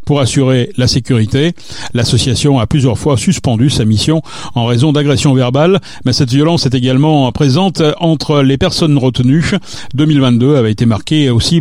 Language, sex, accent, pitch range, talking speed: French, male, French, 130-165 Hz, 155 wpm